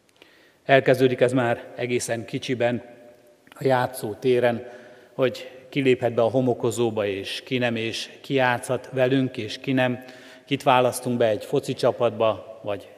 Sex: male